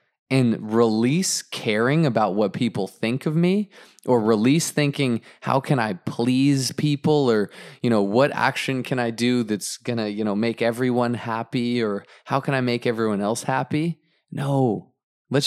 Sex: male